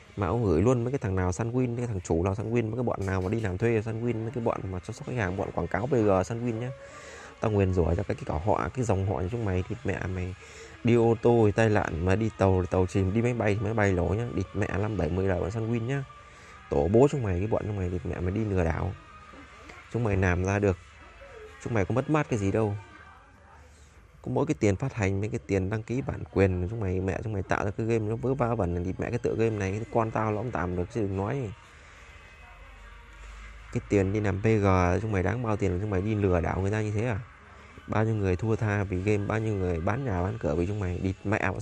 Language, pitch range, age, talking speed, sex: Vietnamese, 90-115 Hz, 20-39, 280 wpm, male